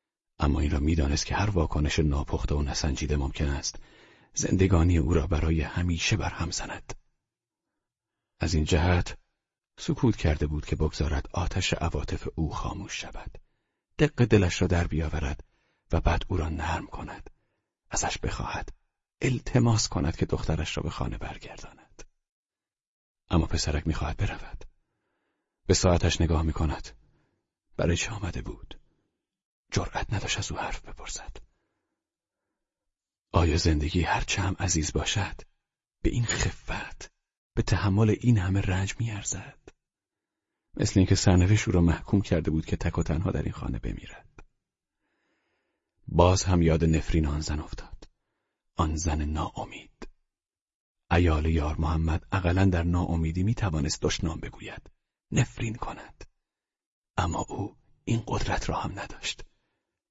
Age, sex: 40-59, male